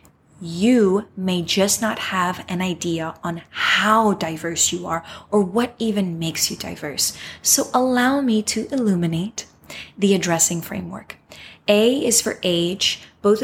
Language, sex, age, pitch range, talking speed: English, female, 20-39, 175-215 Hz, 140 wpm